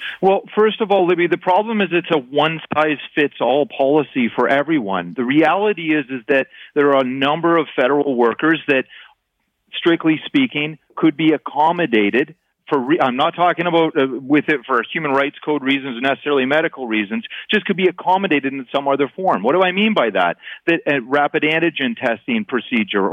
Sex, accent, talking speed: male, American, 185 wpm